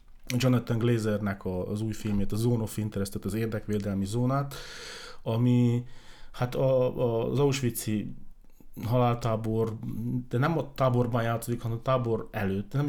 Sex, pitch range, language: male, 100-120 Hz, Hungarian